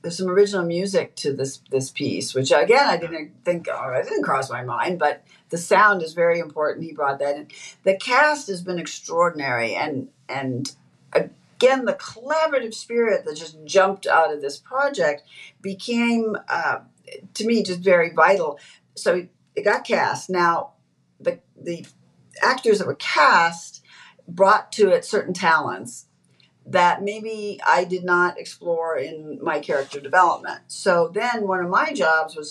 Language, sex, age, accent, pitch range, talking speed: English, female, 50-69, American, 150-215 Hz, 160 wpm